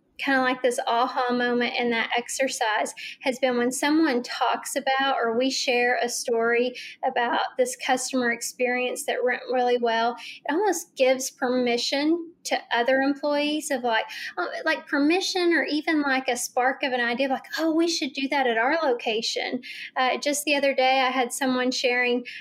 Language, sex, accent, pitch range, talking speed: English, female, American, 245-280 Hz, 175 wpm